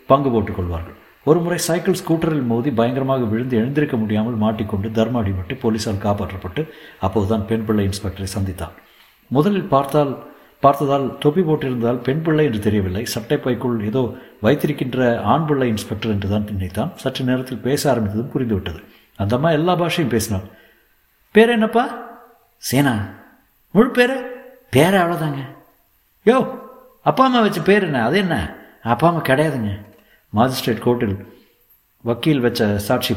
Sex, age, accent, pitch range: male, 60-79, native, 110-160 Hz